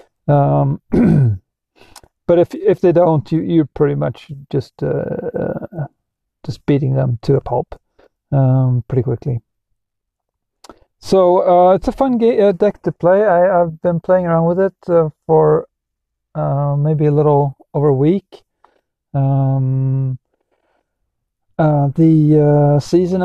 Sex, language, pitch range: male, English, 140-175 Hz